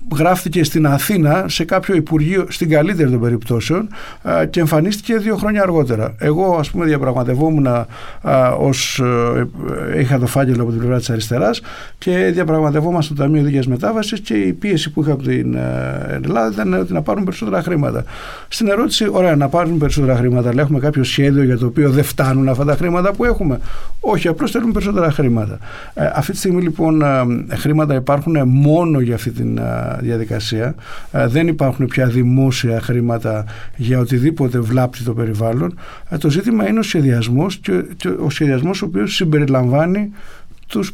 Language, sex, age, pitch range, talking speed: Greek, male, 50-69, 125-170 Hz, 155 wpm